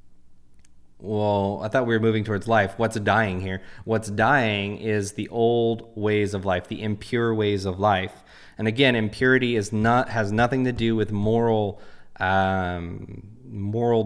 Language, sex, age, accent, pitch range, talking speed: English, male, 20-39, American, 100-120 Hz, 160 wpm